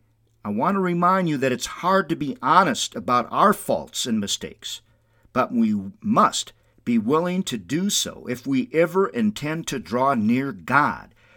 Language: English